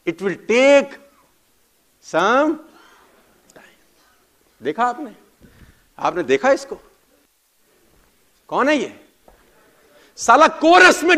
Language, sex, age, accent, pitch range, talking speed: Hindi, male, 50-69, native, 215-290 Hz, 80 wpm